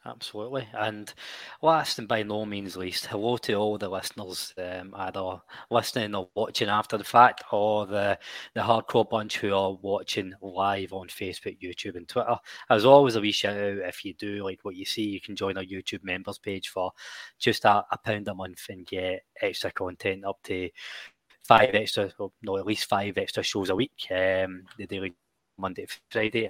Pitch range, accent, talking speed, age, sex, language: 95-110 Hz, British, 195 wpm, 20-39, male, English